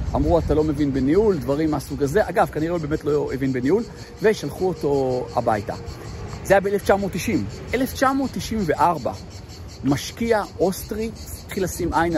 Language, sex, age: Hebrew, male, 50-69